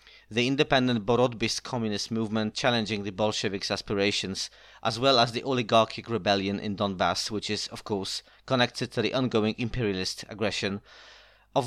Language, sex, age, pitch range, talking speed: Polish, male, 30-49, 105-125 Hz, 145 wpm